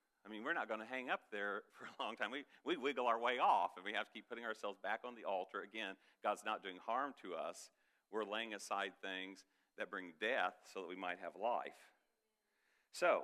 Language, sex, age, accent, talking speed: English, male, 50-69, American, 230 wpm